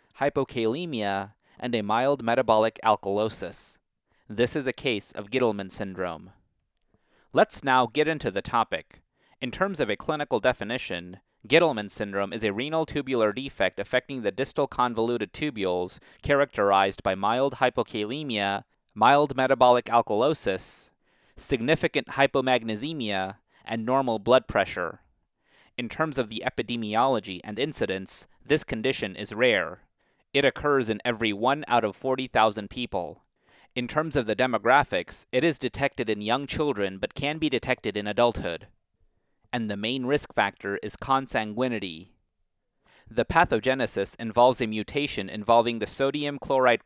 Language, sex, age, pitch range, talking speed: English, male, 30-49, 105-135 Hz, 130 wpm